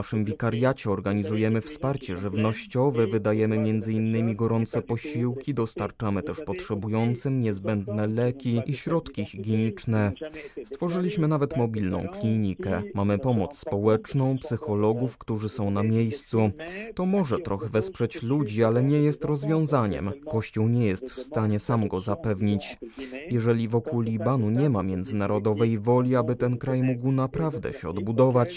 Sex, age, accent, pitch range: male, 20-39, native, 105-135 Hz